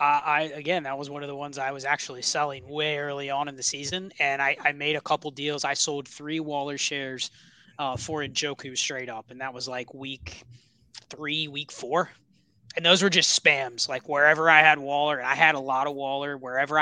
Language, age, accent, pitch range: English, 20-39, American, 140-160 Hz